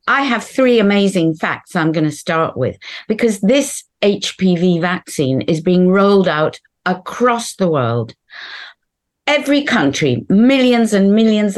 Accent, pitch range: British, 165-245 Hz